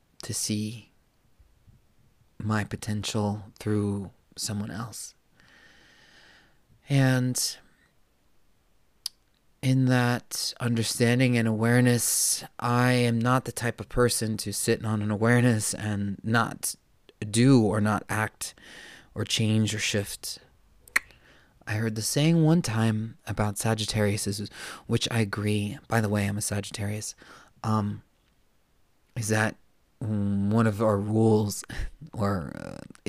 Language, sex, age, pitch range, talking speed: English, male, 20-39, 105-115 Hz, 110 wpm